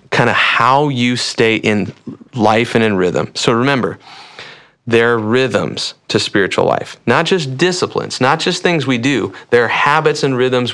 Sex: male